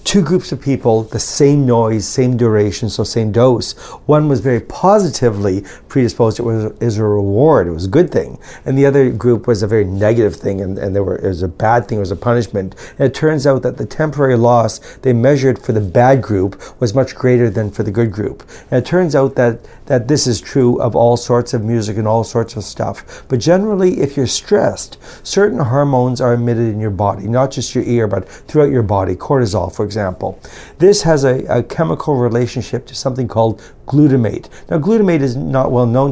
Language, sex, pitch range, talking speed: English, male, 110-135 Hz, 215 wpm